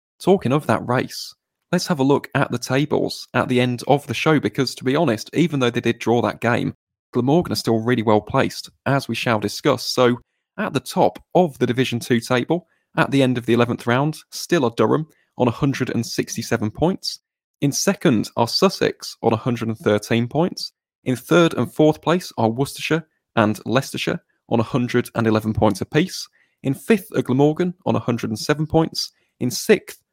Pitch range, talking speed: 115-140 Hz, 175 wpm